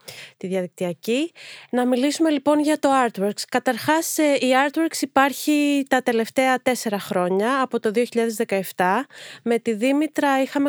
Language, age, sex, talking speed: Greek, 20-39, female, 130 wpm